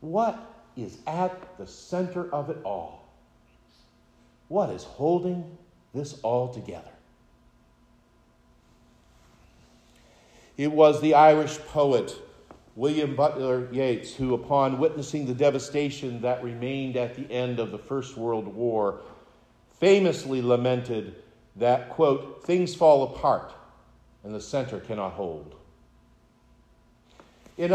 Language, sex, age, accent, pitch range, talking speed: English, male, 50-69, American, 125-185 Hz, 110 wpm